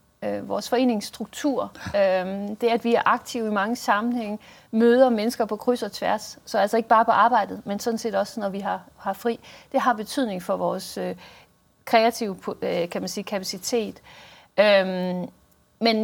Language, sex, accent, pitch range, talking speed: Danish, female, native, 200-240 Hz, 155 wpm